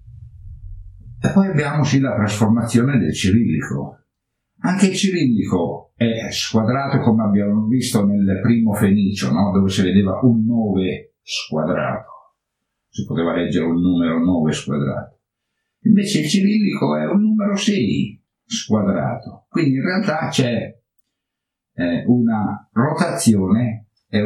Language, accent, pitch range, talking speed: Italian, native, 100-130 Hz, 115 wpm